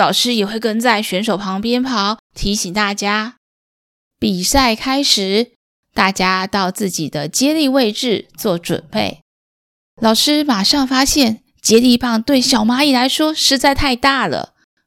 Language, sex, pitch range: Chinese, female, 195-260 Hz